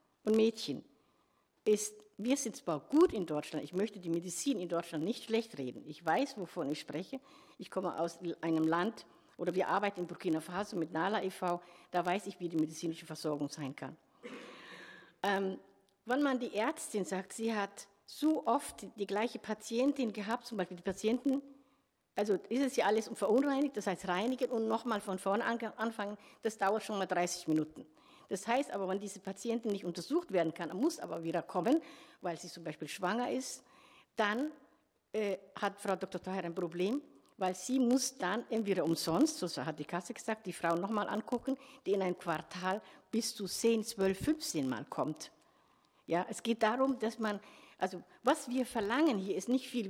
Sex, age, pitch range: female, 60-79, 180-240 Hz